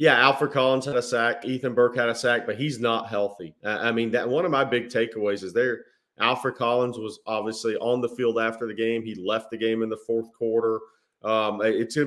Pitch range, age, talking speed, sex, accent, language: 110-130 Hz, 30-49, 235 wpm, male, American, English